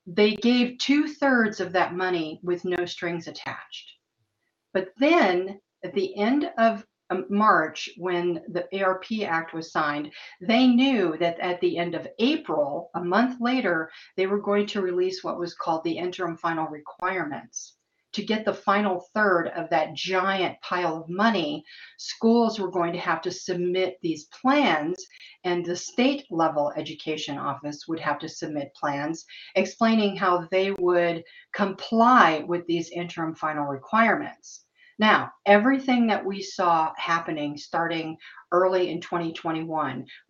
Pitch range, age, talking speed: 165-205 Hz, 50-69, 145 wpm